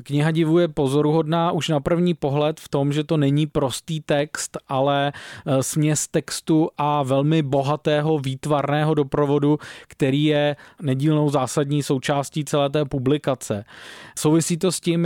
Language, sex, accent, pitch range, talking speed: Czech, male, native, 140-155 Hz, 140 wpm